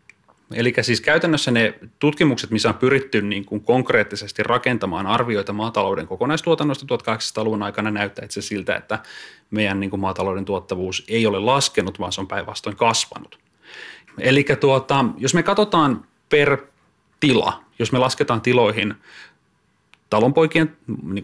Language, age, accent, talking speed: Finnish, 30-49, native, 135 wpm